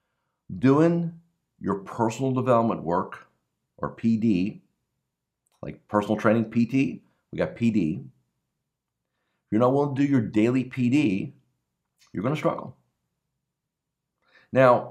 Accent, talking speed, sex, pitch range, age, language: American, 110 wpm, male, 105-130 Hz, 50-69, English